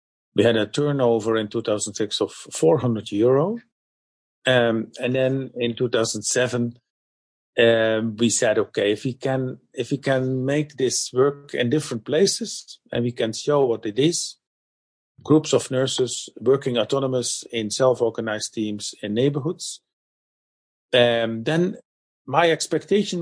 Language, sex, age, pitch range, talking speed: English, male, 50-69, 115-145 Hz, 130 wpm